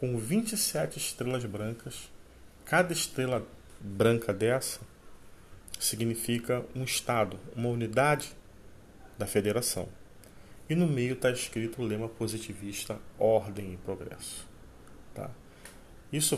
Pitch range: 100-130 Hz